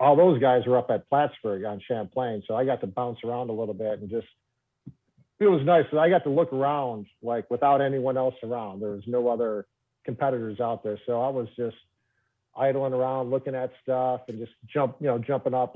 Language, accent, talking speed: English, American, 215 wpm